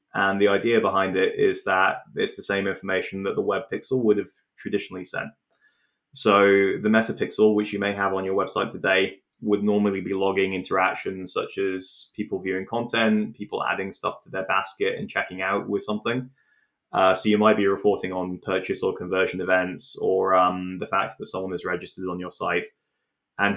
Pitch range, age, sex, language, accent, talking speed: 95-110 Hz, 20-39, male, English, British, 190 wpm